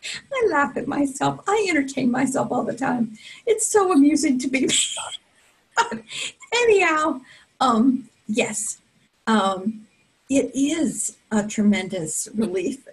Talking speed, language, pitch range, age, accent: 115 wpm, English, 195-240 Hz, 50-69, American